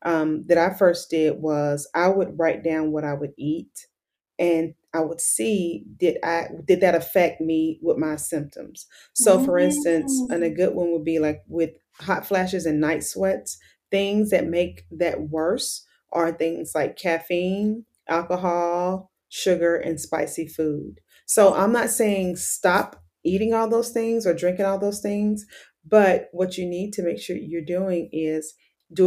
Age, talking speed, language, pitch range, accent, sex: 30-49, 170 wpm, English, 165-200 Hz, American, female